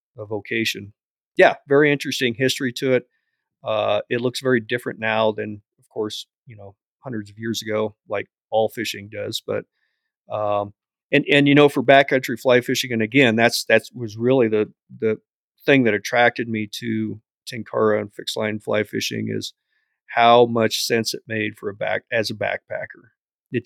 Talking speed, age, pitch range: 175 wpm, 40-59, 110-125 Hz